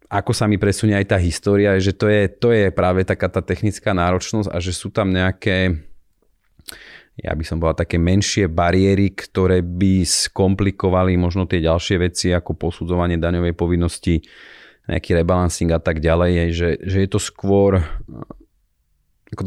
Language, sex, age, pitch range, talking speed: Slovak, male, 30-49, 80-95 Hz, 155 wpm